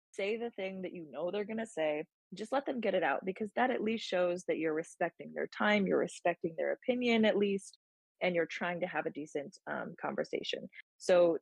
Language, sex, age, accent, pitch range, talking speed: English, female, 20-39, American, 160-210 Hz, 220 wpm